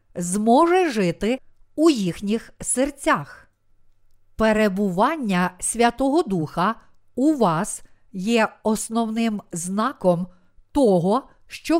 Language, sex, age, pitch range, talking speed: Ukrainian, female, 50-69, 180-250 Hz, 75 wpm